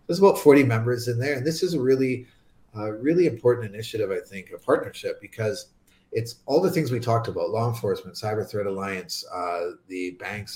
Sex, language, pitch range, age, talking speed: male, English, 100-130 Hz, 30-49, 195 wpm